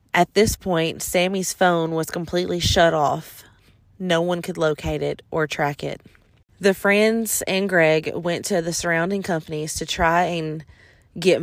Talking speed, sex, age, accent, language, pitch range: 160 wpm, female, 30-49, American, English, 155-180 Hz